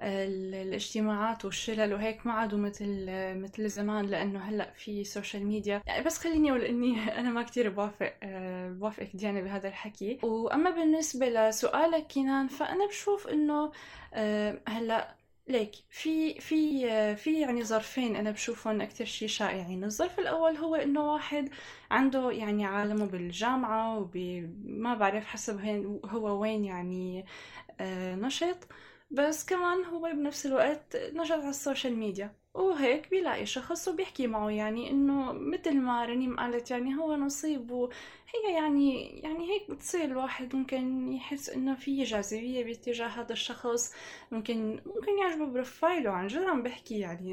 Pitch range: 210-290 Hz